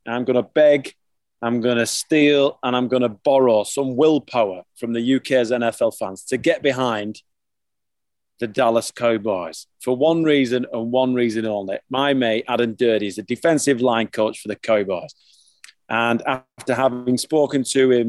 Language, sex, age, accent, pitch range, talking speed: English, male, 30-49, British, 110-135 Hz, 170 wpm